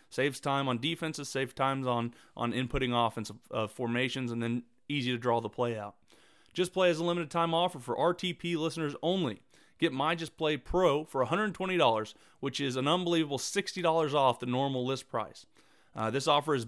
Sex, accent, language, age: male, American, English, 30-49